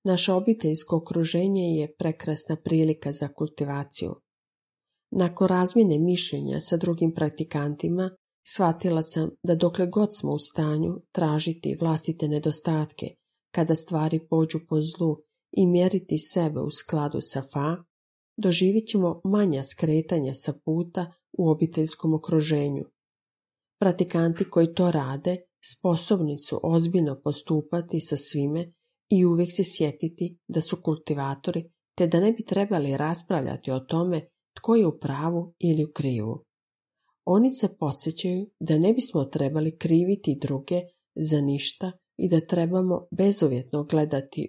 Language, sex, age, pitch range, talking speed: Croatian, female, 40-59, 150-180 Hz, 125 wpm